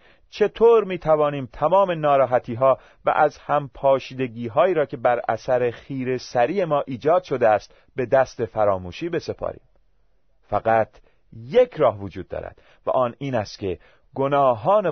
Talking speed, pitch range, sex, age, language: 145 wpm, 105-145 Hz, male, 30-49, Persian